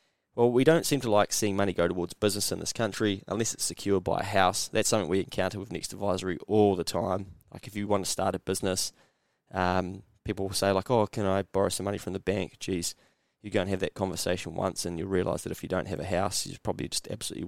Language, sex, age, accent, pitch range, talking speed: English, male, 20-39, Australian, 95-120 Hz, 260 wpm